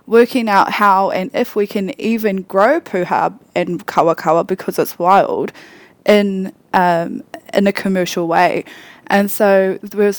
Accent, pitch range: Australian, 180-220 Hz